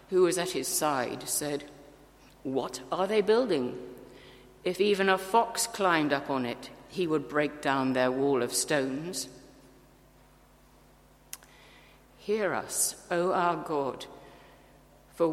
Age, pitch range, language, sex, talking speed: 60-79, 150-200 Hz, English, female, 125 wpm